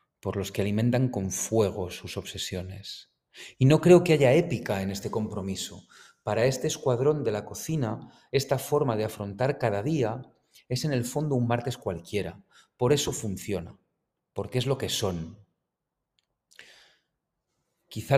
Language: Spanish